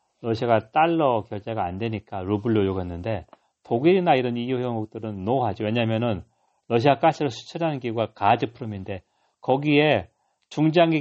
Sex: male